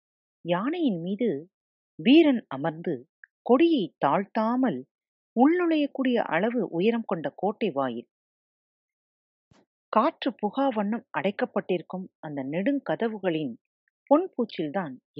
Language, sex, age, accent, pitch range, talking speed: Tamil, female, 40-59, native, 160-255 Hz, 80 wpm